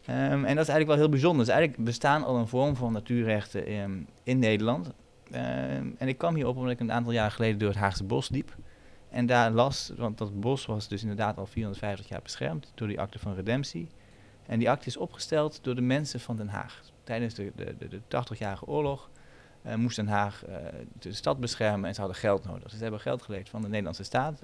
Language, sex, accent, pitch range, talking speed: Dutch, male, Dutch, 105-125 Hz, 230 wpm